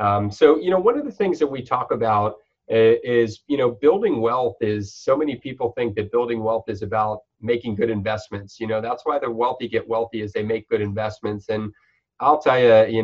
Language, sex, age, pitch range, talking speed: English, male, 30-49, 110-150 Hz, 220 wpm